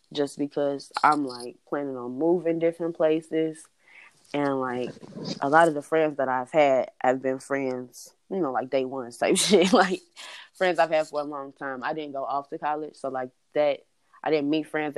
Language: English